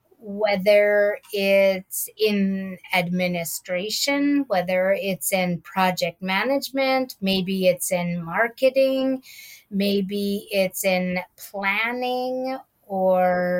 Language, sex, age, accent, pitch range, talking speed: English, female, 30-49, American, 185-225 Hz, 80 wpm